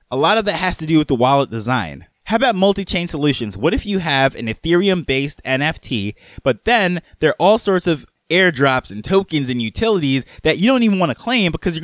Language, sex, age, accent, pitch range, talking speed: English, male, 20-39, American, 130-175 Hz, 220 wpm